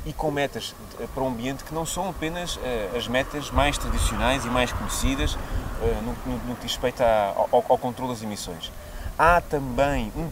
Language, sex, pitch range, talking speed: Portuguese, male, 110-160 Hz, 165 wpm